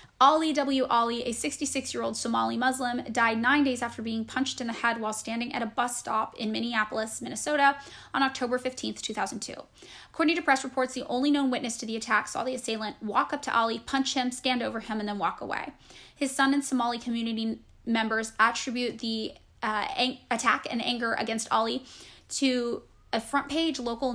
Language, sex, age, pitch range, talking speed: English, female, 10-29, 225-260 Hz, 190 wpm